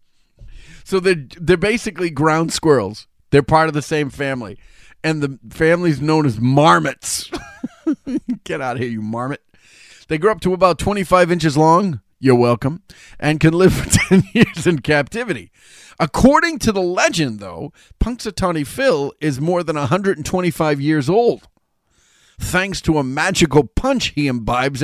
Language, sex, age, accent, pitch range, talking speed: English, male, 40-59, American, 125-180 Hz, 150 wpm